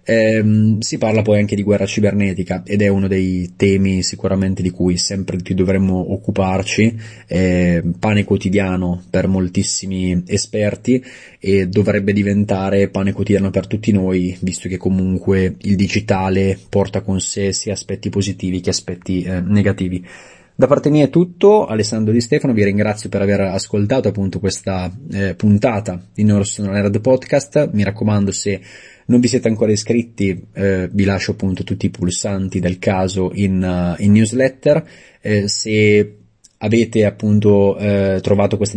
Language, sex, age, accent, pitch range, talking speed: Italian, male, 20-39, native, 95-110 Hz, 150 wpm